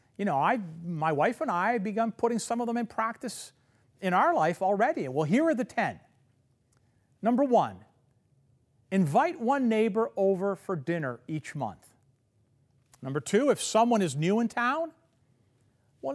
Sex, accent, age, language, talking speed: male, American, 50-69, English, 160 wpm